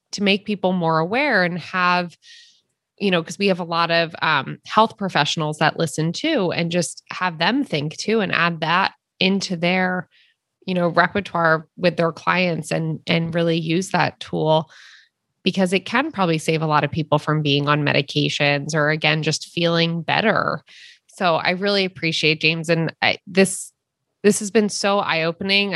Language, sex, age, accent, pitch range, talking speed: English, female, 20-39, American, 165-210 Hz, 175 wpm